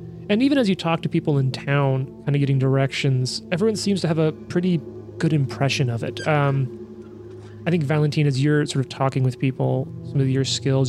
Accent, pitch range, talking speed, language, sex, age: American, 130-160 Hz, 210 wpm, English, male, 30-49